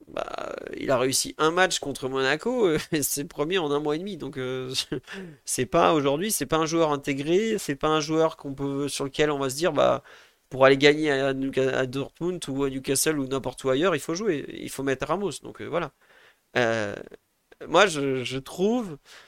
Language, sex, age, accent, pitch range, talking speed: French, male, 30-49, French, 135-170 Hz, 200 wpm